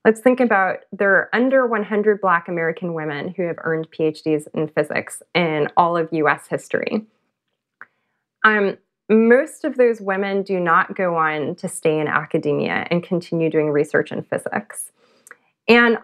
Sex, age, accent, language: female, 20-39, American, English